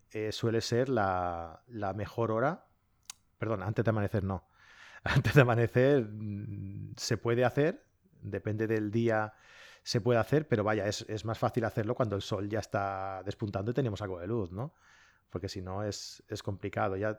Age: 30-49